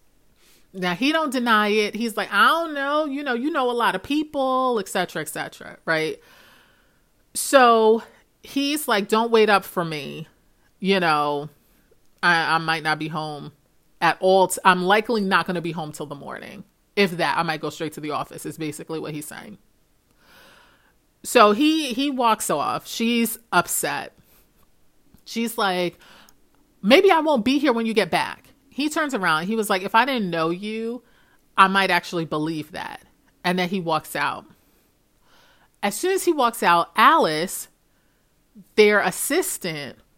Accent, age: American, 30-49